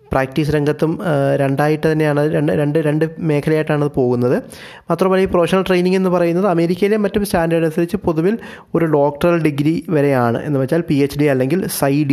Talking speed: 160 wpm